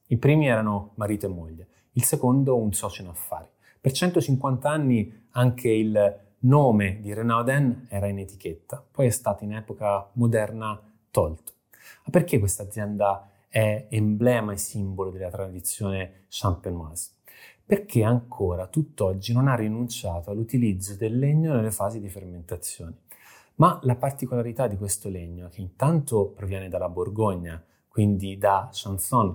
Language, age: Italian, 30-49